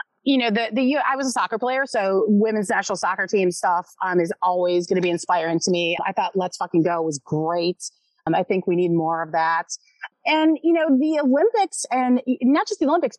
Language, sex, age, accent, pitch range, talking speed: English, female, 30-49, American, 175-255 Hz, 225 wpm